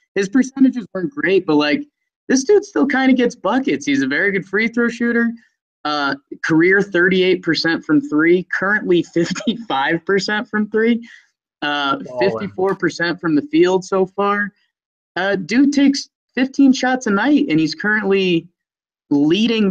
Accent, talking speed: American, 160 wpm